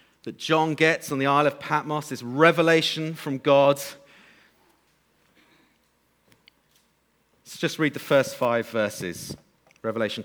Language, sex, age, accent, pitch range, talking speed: English, male, 40-59, British, 150-190 Hz, 115 wpm